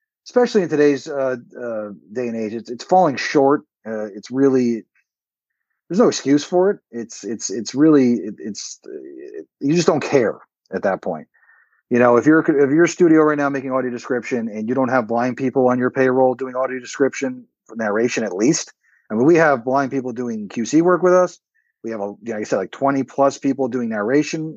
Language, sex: English, male